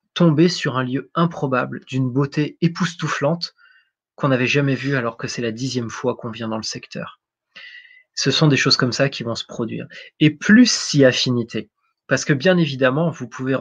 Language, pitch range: French, 120-150 Hz